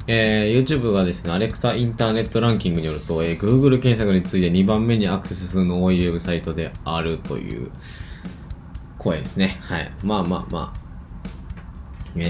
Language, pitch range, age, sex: Japanese, 85-110 Hz, 20-39, male